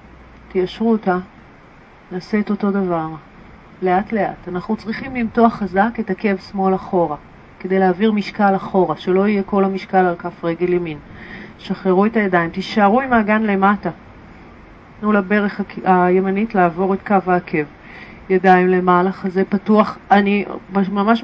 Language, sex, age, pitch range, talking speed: Hebrew, female, 40-59, 180-215 Hz, 140 wpm